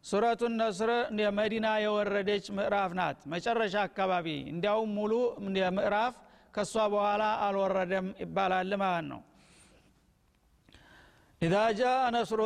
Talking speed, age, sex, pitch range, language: 70 wpm, 50-69, male, 205-225 Hz, Amharic